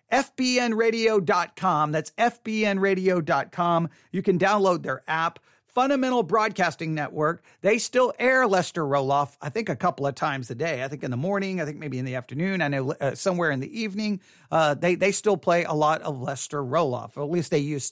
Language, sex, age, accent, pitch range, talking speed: English, male, 40-59, American, 140-220 Hz, 190 wpm